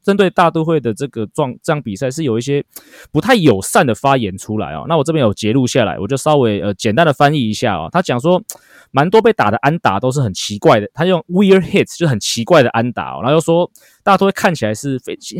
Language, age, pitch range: Chinese, 20-39, 115-160 Hz